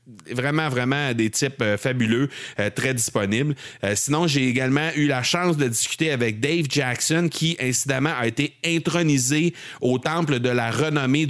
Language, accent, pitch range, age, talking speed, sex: French, Canadian, 110-135 Hz, 30-49, 160 wpm, male